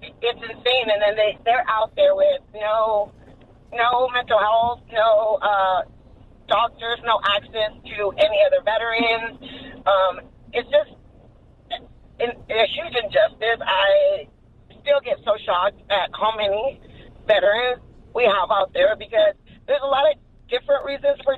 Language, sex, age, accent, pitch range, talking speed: English, female, 30-49, American, 195-280 Hz, 140 wpm